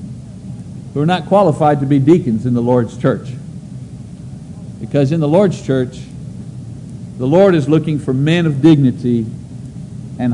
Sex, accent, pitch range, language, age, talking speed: male, American, 145-185 Hz, English, 50-69, 140 wpm